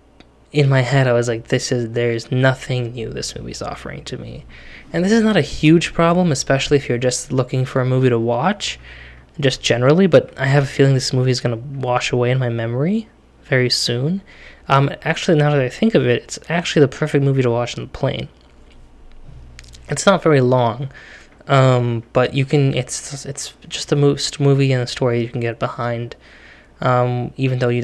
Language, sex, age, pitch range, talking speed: English, male, 10-29, 120-145 Hz, 205 wpm